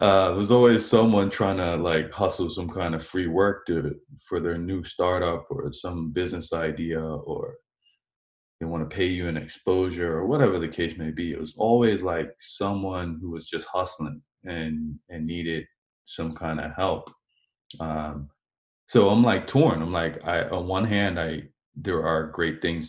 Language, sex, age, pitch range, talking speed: English, male, 20-39, 80-95 Hz, 180 wpm